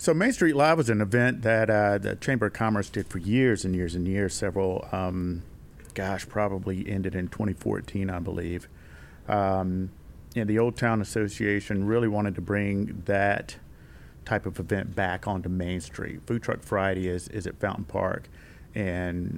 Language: English